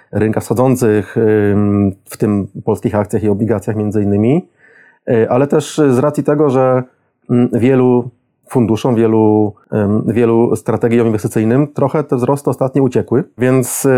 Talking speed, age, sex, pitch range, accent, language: 120 wpm, 30-49, male, 115-135 Hz, native, Polish